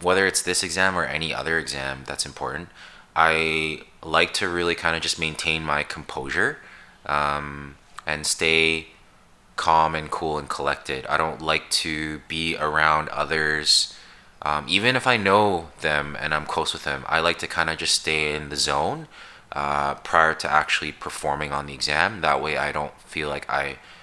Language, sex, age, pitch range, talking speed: English, male, 20-39, 75-85 Hz, 175 wpm